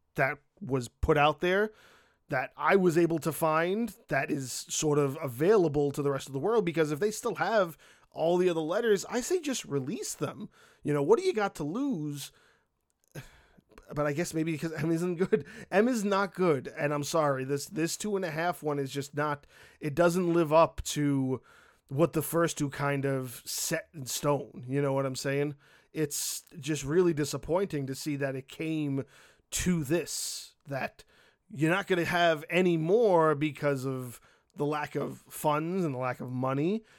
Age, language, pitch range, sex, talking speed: 20-39, English, 145-185 Hz, male, 190 wpm